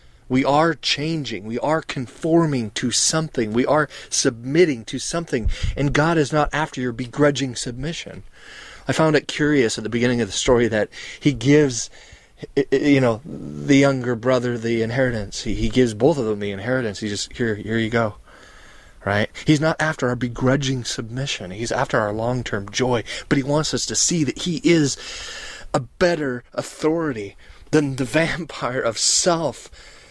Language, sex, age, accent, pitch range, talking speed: English, male, 30-49, American, 110-145 Hz, 165 wpm